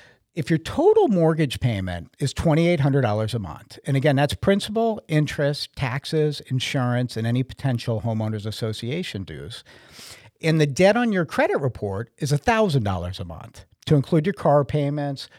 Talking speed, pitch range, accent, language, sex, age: 150 wpm, 115-175 Hz, American, English, male, 50-69